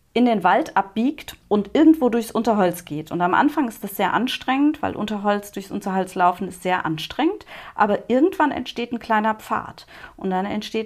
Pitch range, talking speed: 175-230 Hz, 180 wpm